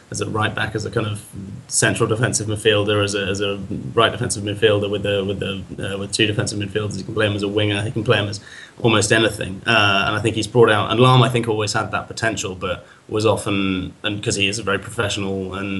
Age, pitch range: 20-39, 100-110 Hz